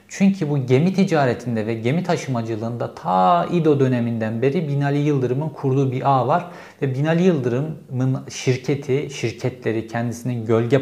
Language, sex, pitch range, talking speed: Turkish, male, 120-150 Hz, 135 wpm